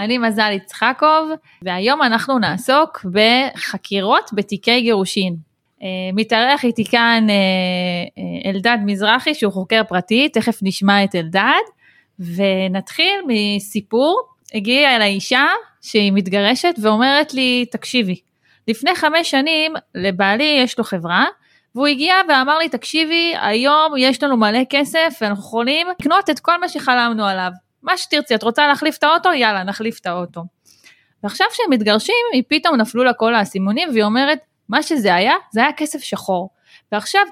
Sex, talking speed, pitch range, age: female, 135 wpm, 200-290 Hz, 20-39